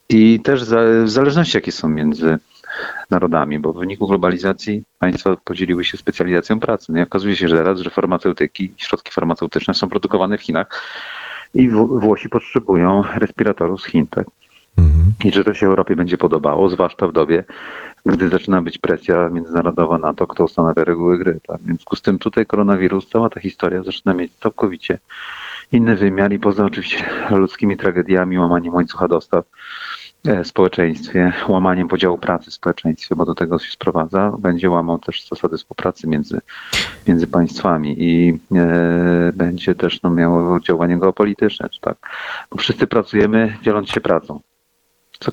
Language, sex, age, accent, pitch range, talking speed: Polish, male, 40-59, native, 85-100 Hz, 160 wpm